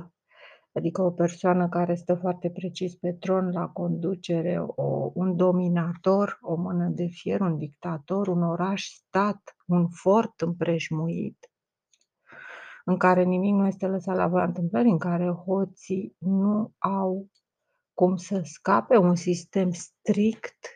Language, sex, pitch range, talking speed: Romanian, female, 170-190 Hz, 130 wpm